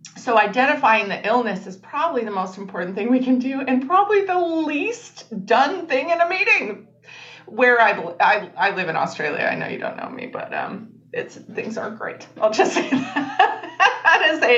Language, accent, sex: English, American, female